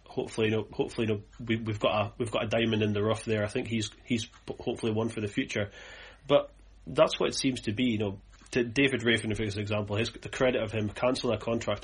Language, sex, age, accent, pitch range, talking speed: English, male, 30-49, British, 105-120 Hz, 250 wpm